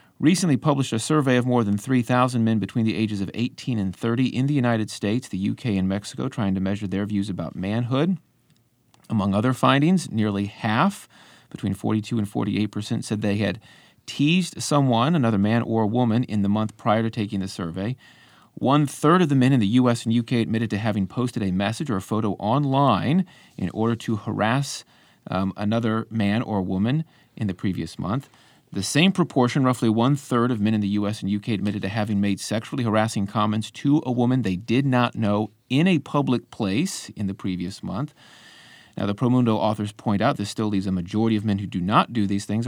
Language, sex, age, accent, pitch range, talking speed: English, male, 40-59, American, 100-125 Hz, 200 wpm